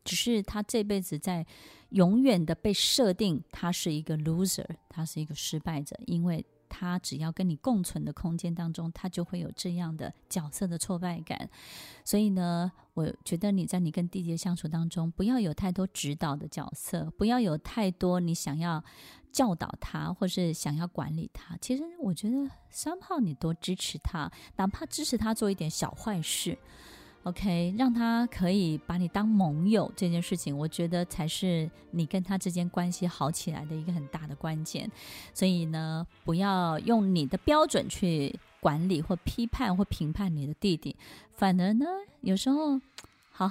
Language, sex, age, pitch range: Chinese, female, 20-39, 165-200 Hz